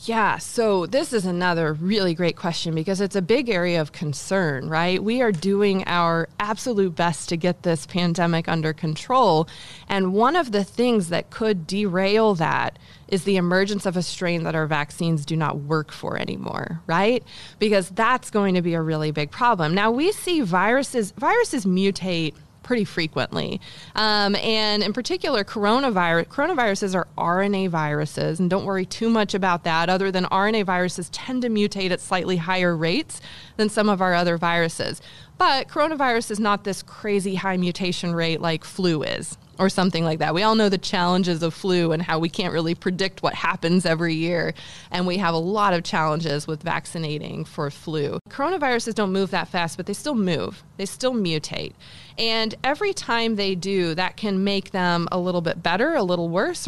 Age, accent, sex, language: 20-39, American, female, English